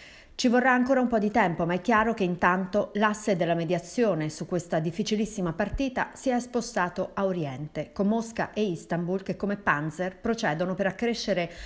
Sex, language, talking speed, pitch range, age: female, Italian, 175 wpm, 170-220 Hz, 40-59